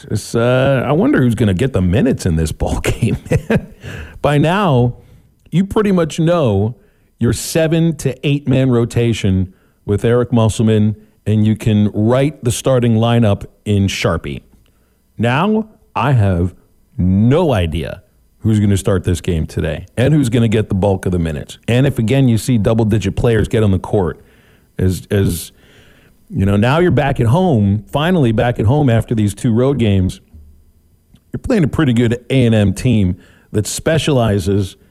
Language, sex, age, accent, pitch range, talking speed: English, male, 40-59, American, 95-130 Hz, 165 wpm